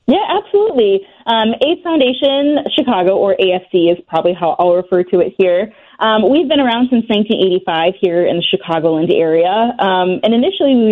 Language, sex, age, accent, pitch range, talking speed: English, female, 20-39, American, 175-240 Hz, 170 wpm